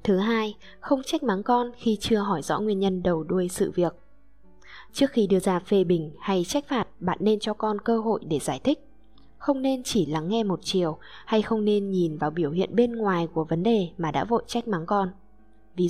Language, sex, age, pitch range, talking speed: Vietnamese, female, 10-29, 185-240 Hz, 225 wpm